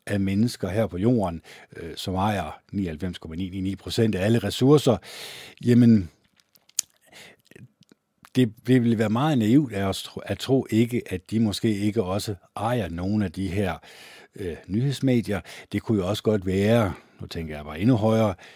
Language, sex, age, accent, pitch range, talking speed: Danish, male, 60-79, native, 95-120 Hz, 155 wpm